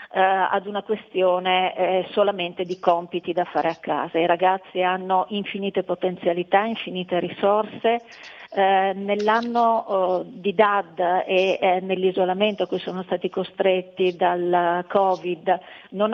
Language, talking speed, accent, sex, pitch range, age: Italian, 110 wpm, native, female, 180-210 Hz, 40-59